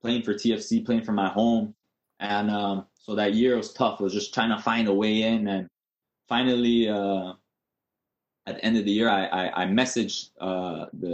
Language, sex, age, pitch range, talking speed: English, male, 20-39, 105-135 Hz, 205 wpm